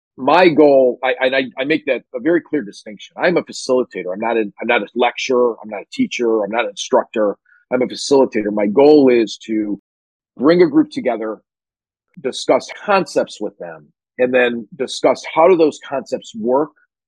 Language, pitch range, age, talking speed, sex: English, 110-150 Hz, 40-59, 185 wpm, male